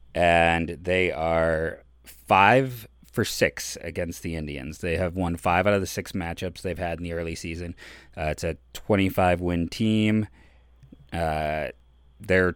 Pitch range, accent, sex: 80-105 Hz, American, male